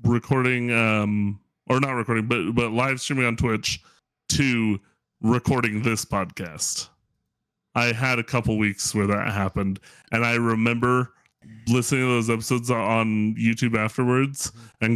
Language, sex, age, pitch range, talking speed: English, male, 30-49, 105-125 Hz, 135 wpm